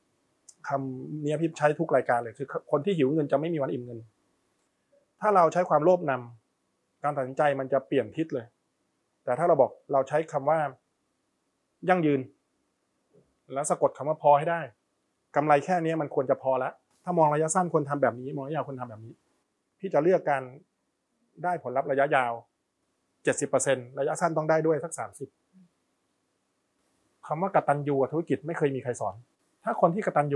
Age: 20-39